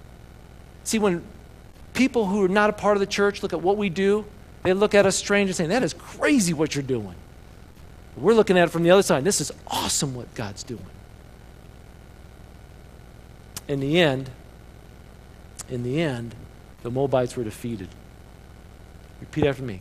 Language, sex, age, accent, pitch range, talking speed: English, male, 50-69, American, 100-140 Hz, 170 wpm